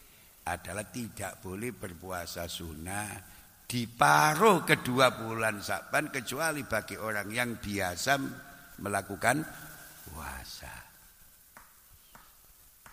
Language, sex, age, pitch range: Indonesian, male, 60-79, 80-115 Hz